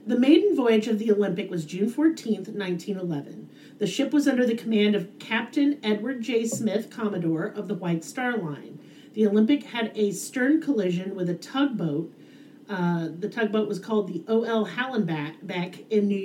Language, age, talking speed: English, 40-59, 170 wpm